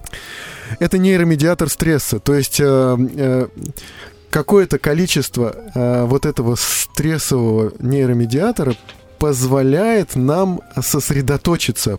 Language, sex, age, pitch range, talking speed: Russian, male, 20-39, 120-145 Hz, 85 wpm